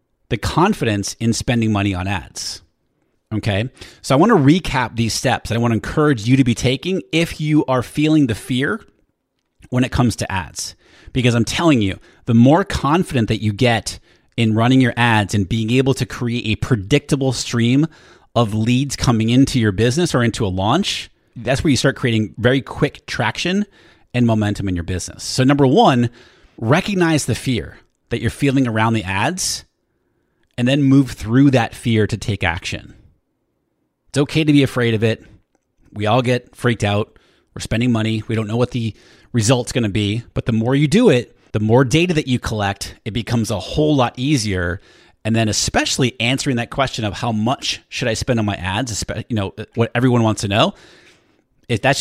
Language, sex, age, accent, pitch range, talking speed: English, male, 30-49, American, 110-135 Hz, 190 wpm